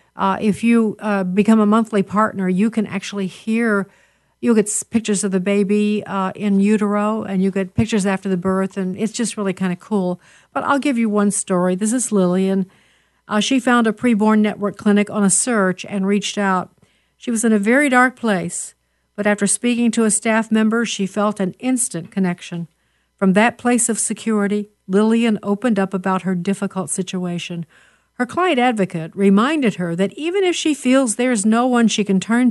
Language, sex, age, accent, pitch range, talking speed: English, female, 60-79, American, 190-230 Hz, 195 wpm